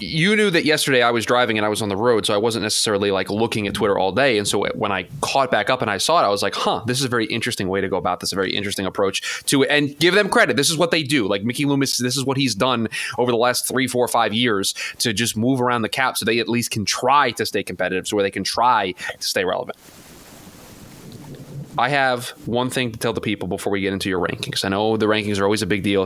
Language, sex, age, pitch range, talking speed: English, male, 20-39, 105-130 Hz, 285 wpm